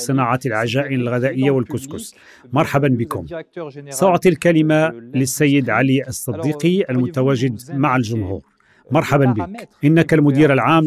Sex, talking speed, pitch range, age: male, 105 wpm, 125-155 Hz, 40-59